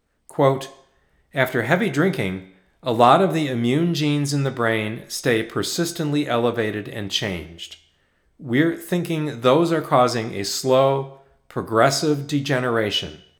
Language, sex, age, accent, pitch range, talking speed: English, male, 40-59, American, 95-140 Hz, 115 wpm